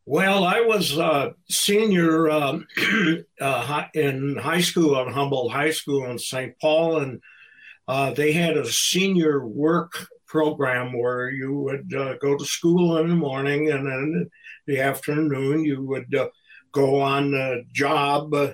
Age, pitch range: 60-79, 135-155 Hz